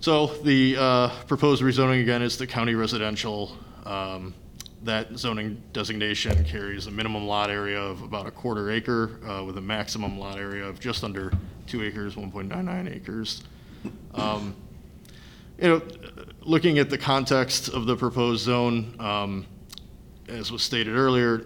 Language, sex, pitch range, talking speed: English, male, 95-110 Hz, 150 wpm